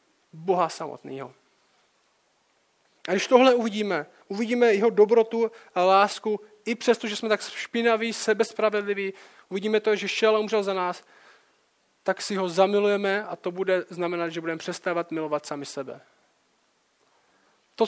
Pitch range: 175-220 Hz